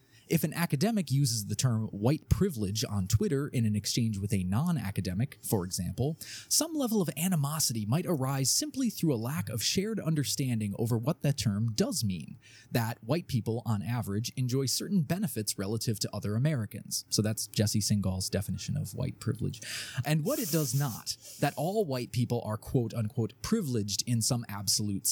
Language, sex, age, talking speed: English, male, 20-39, 170 wpm